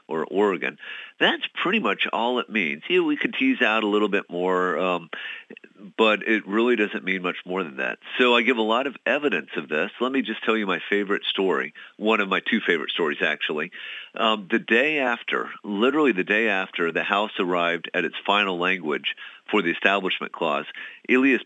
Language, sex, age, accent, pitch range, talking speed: English, male, 50-69, American, 95-115 Hz, 200 wpm